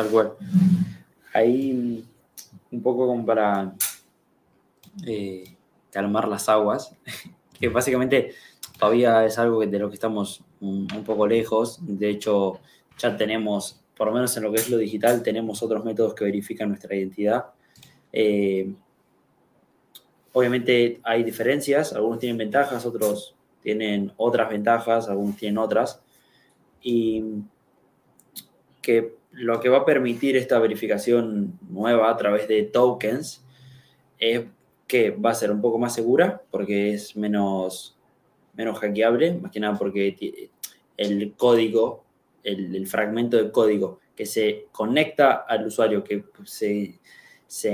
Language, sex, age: Spanish, male, 20-39